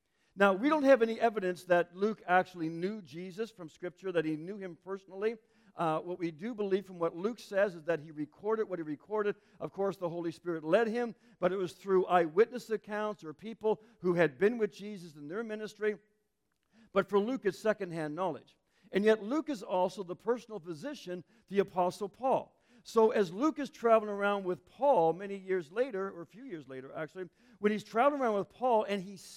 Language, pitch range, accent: English, 180-220 Hz, American